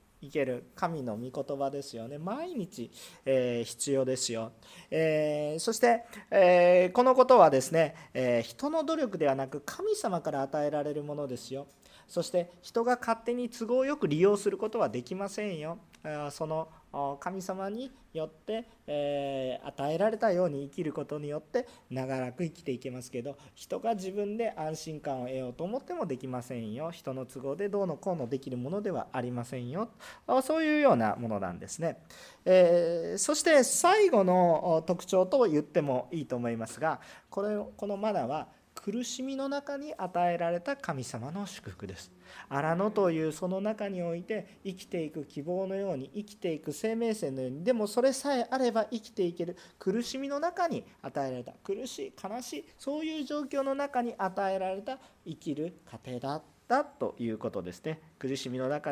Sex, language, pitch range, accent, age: male, Japanese, 140-225 Hz, native, 40-59